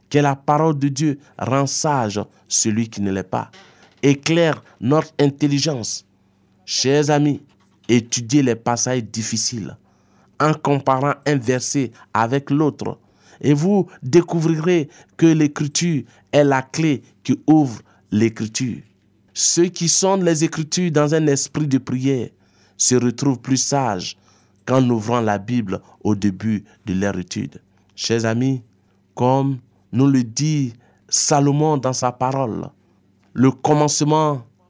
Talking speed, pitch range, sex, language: 125 wpm, 100-145 Hz, male, French